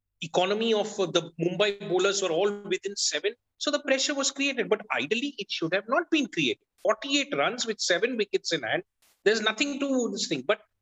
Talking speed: 195 wpm